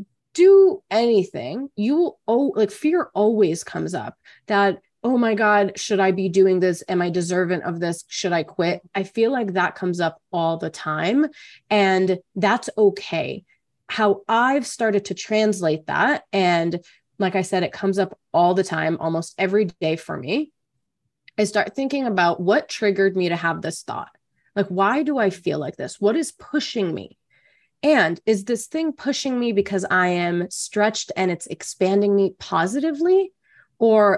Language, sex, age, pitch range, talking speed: English, female, 30-49, 170-215 Hz, 170 wpm